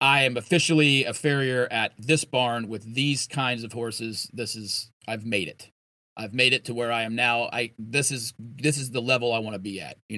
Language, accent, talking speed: English, American, 230 wpm